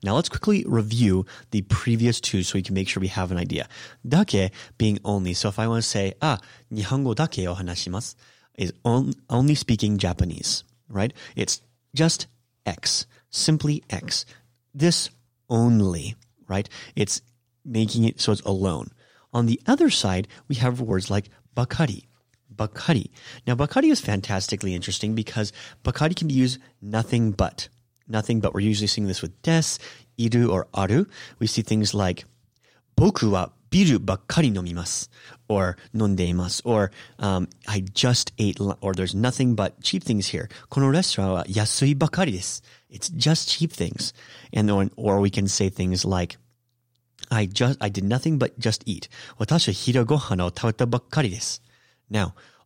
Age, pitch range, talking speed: 30-49, 95-125 Hz, 155 wpm